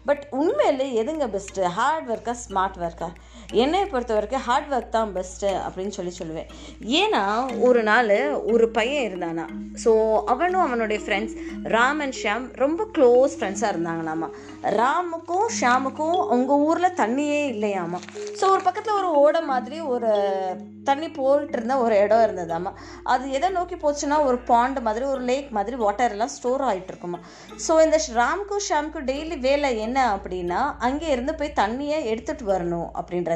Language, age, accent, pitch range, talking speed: Tamil, 20-39, native, 210-295 Hz, 145 wpm